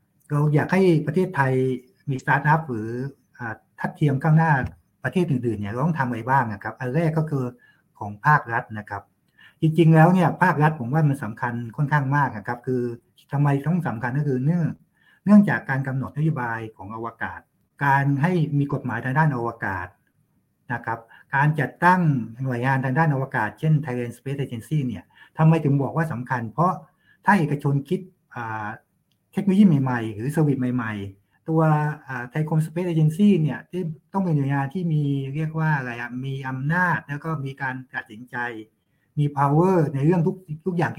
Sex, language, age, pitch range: male, Thai, 60-79, 125-155 Hz